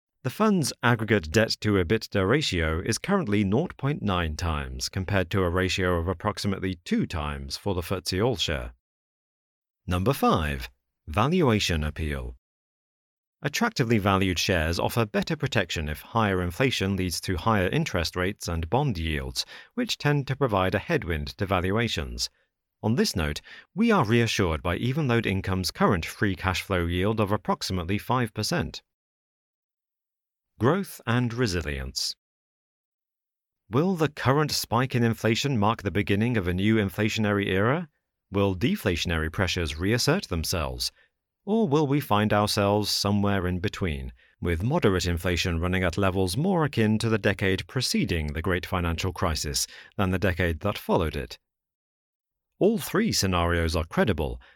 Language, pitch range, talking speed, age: English, 85-115 Hz, 135 wpm, 40-59